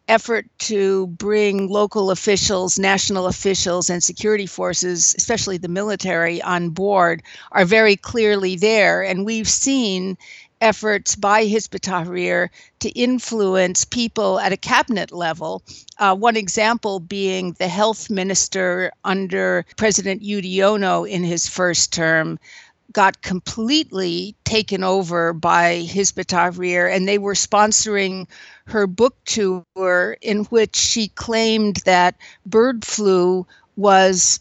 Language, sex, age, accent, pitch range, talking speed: English, female, 60-79, American, 180-210 Hz, 115 wpm